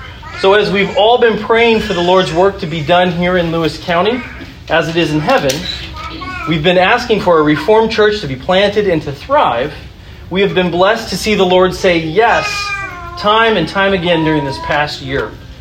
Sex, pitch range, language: male, 150-195 Hz, English